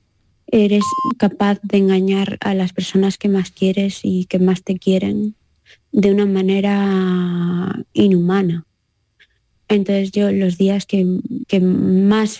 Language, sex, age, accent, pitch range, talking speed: Spanish, female, 20-39, Spanish, 180-205 Hz, 125 wpm